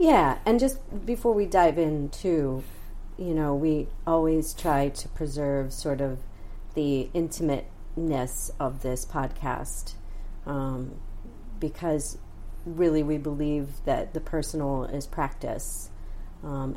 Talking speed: 120 wpm